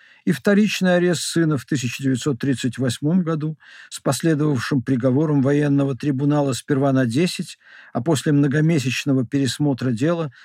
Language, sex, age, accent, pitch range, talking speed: Russian, male, 60-79, native, 135-165 Hz, 115 wpm